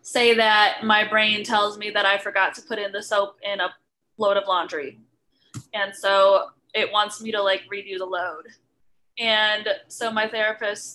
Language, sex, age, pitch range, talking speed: English, female, 10-29, 195-230 Hz, 180 wpm